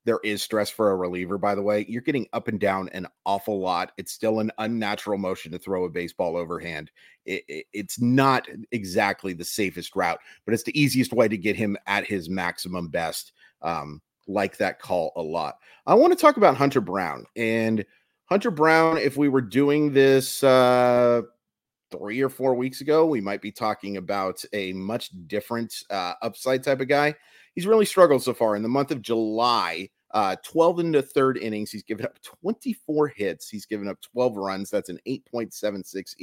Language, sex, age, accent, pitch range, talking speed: English, male, 30-49, American, 95-135 Hz, 185 wpm